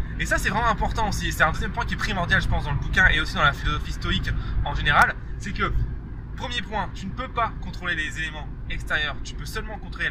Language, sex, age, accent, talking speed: French, male, 20-39, French, 250 wpm